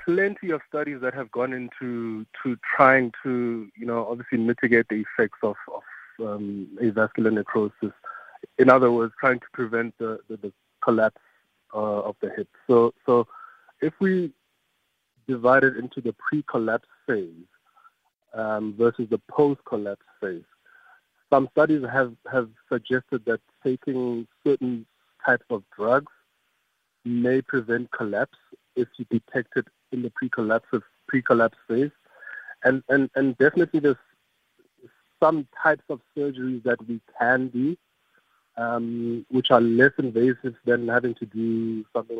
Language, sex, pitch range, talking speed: English, male, 115-135 Hz, 135 wpm